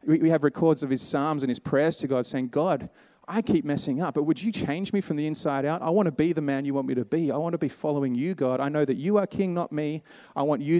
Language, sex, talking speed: English, male, 305 wpm